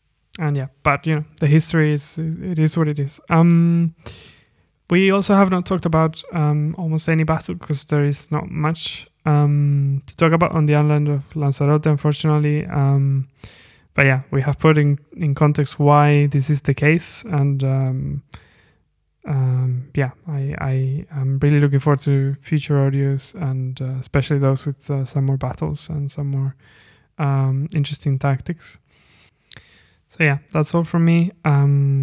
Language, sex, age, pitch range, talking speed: English, male, 20-39, 135-155 Hz, 165 wpm